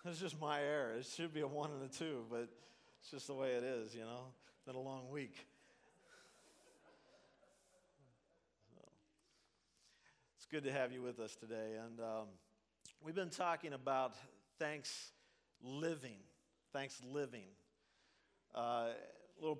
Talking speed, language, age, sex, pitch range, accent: 145 wpm, English, 50-69, male, 115-145 Hz, American